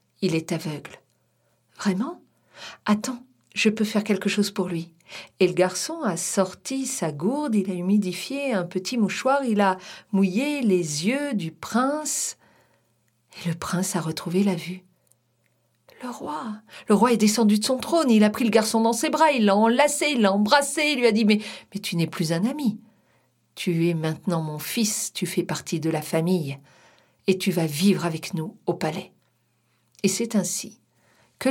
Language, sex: French, female